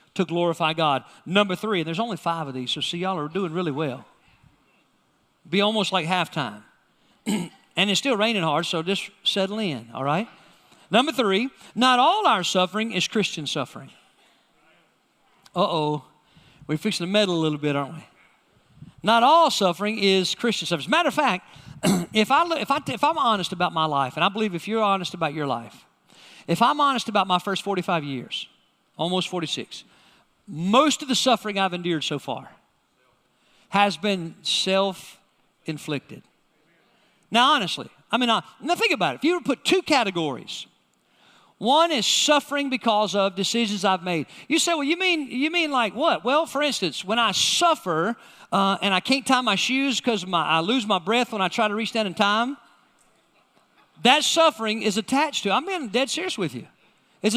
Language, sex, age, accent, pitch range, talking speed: English, male, 50-69, American, 170-250 Hz, 185 wpm